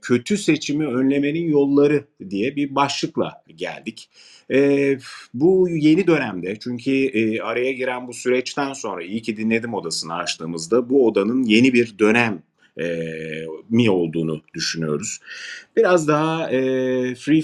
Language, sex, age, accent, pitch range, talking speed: Turkish, male, 40-59, native, 100-130 Hz, 120 wpm